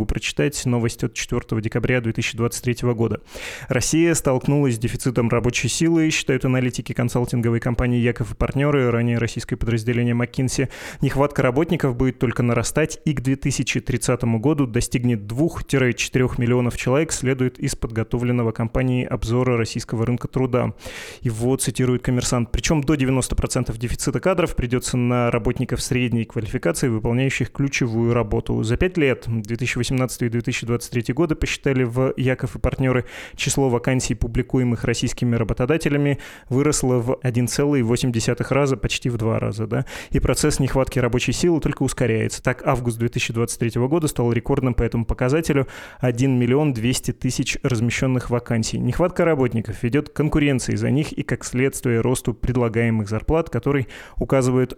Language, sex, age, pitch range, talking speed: Russian, male, 20-39, 120-135 Hz, 135 wpm